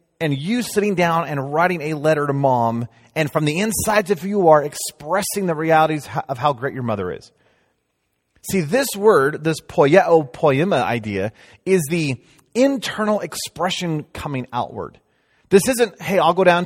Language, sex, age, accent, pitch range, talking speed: English, male, 30-49, American, 130-185 Hz, 165 wpm